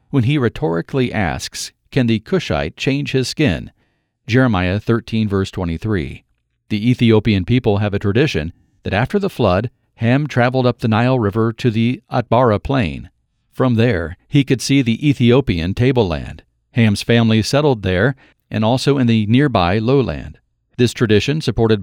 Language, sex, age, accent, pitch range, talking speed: English, male, 50-69, American, 105-125 Hz, 150 wpm